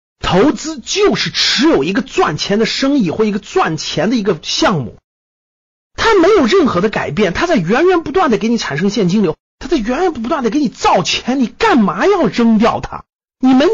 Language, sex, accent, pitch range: Chinese, male, native, 170-260 Hz